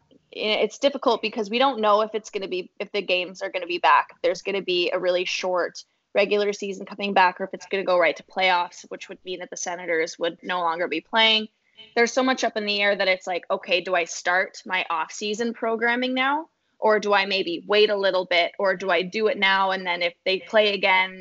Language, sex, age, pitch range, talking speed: English, female, 20-39, 185-210 Hz, 250 wpm